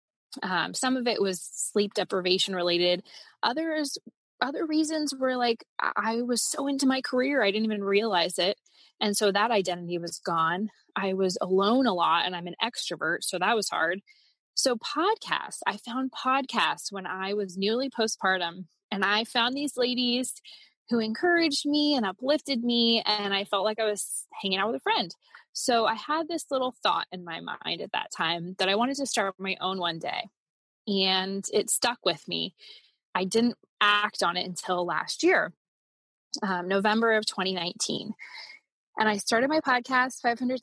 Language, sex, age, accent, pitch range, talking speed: English, female, 20-39, American, 190-255 Hz, 175 wpm